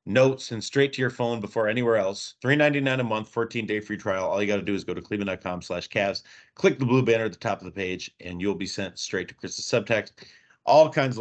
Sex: male